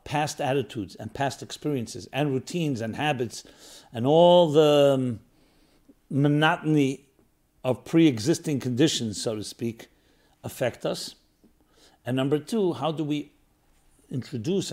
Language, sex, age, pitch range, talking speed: English, male, 60-79, 125-165 Hz, 115 wpm